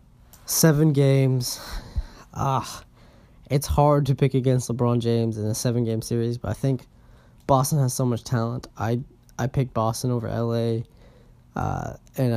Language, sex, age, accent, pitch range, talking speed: English, male, 10-29, American, 115-130 Hz, 155 wpm